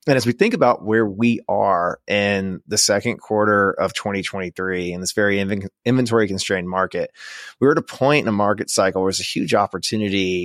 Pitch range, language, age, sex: 95-110 Hz, English, 20-39, male